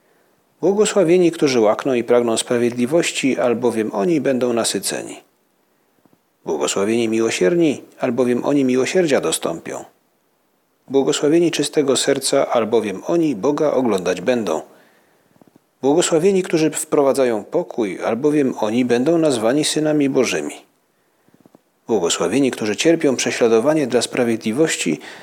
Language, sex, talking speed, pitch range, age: Polish, male, 95 wpm, 120-165 Hz, 40-59